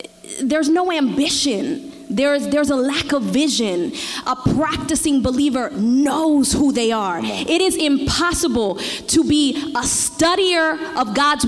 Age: 20-39